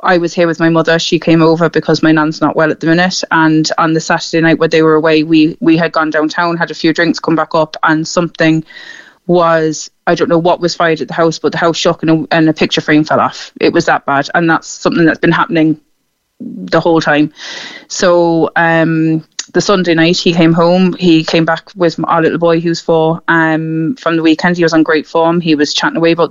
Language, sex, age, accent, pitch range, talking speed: English, female, 20-39, Irish, 160-175 Hz, 240 wpm